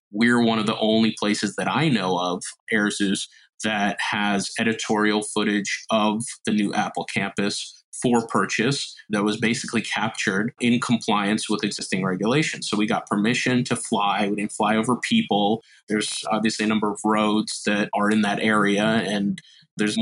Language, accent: English, American